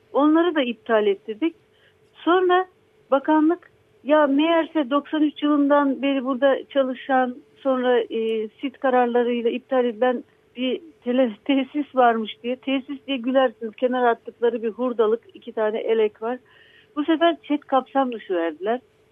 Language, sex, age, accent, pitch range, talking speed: Turkish, female, 60-79, native, 225-275 Hz, 130 wpm